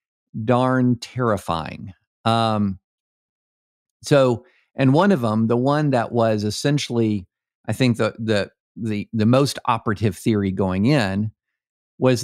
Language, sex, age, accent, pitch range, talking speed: English, male, 50-69, American, 110-135 Hz, 125 wpm